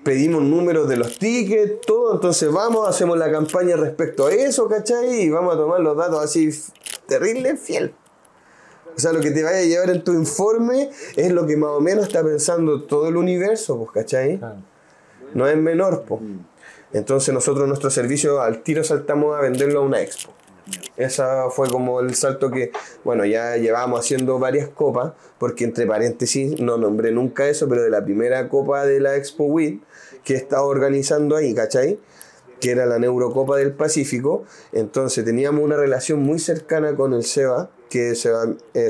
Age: 20-39